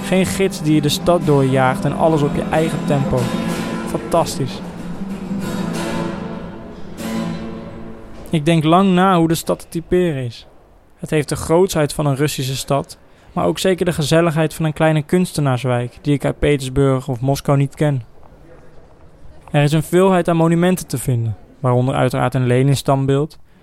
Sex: male